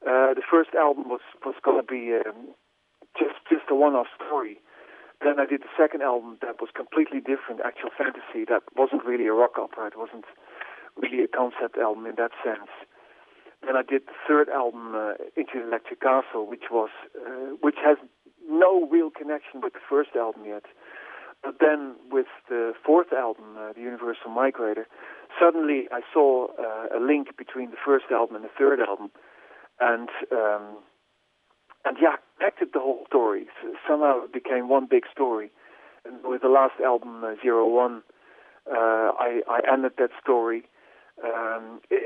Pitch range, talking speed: 115-150 Hz, 175 wpm